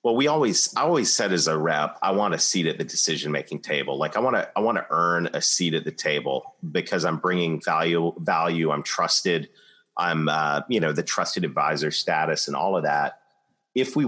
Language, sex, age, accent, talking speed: English, male, 30-49, American, 200 wpm